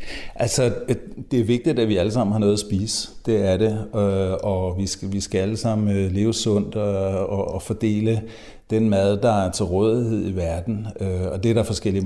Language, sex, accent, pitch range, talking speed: Danish, male, native, 95-115 Hz, 205 wpm